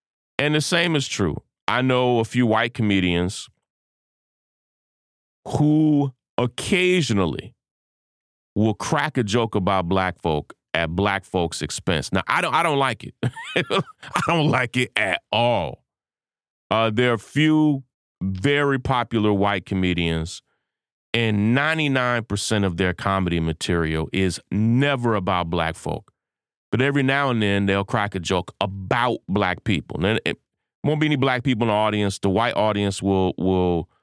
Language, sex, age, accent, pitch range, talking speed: English, male, 30-49, American, 90-125 Hz, 145 wpm